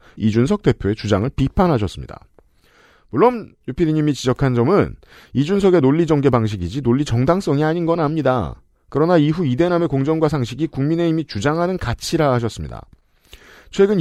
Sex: male